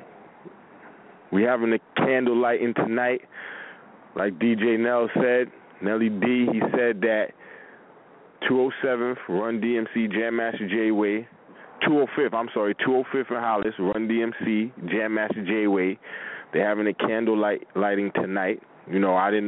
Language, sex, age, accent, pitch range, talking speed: English, male, 20-39, American, 100-115 Hz, 175 wpm